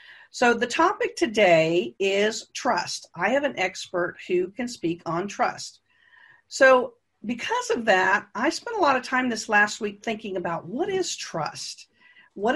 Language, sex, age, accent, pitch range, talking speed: English, female, 50-69, American, 195-290 Hz, 160 wpm